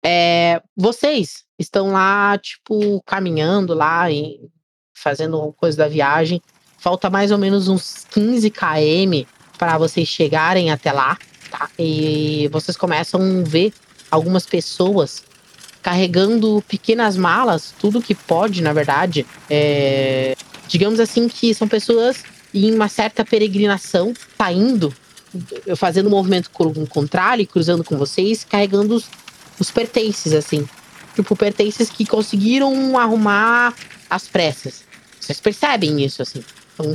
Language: Portuguese